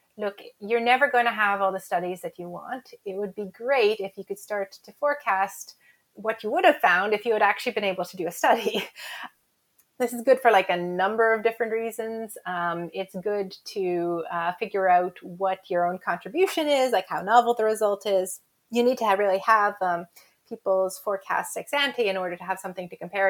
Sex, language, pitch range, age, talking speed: female, English, 190-245 Hz, 30-49, 215 wpm